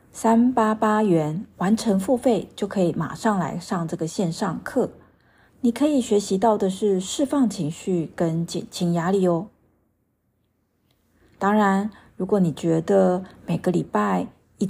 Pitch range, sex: 170-210 Hz, female